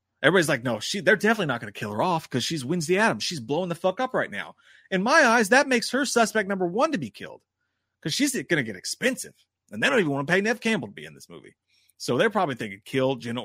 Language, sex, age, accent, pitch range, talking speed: English, male, 30-49, American, 130-210 Hz, 270 wpm